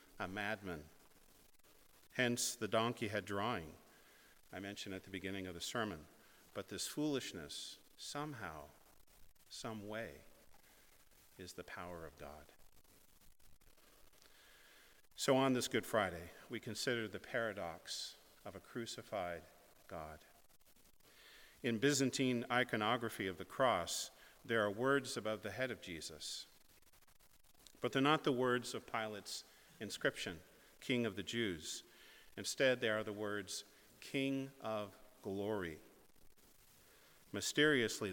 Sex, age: male, 50-69